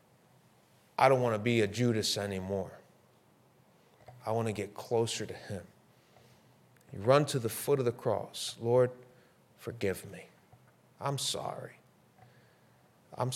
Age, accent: 40-59, American